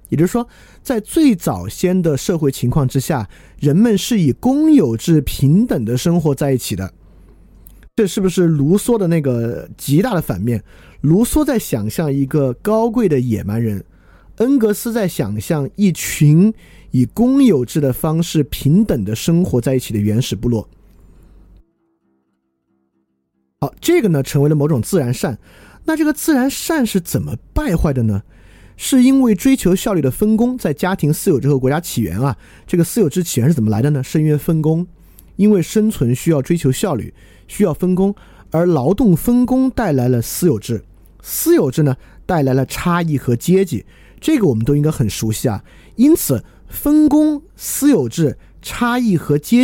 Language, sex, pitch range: Chinese, male, 120-200 Hz